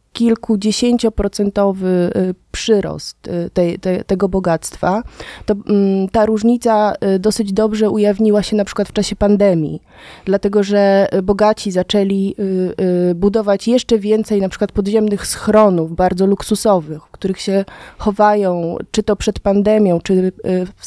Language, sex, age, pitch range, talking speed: Polish, female, 20-39, 185-210 Hz, 120 wpm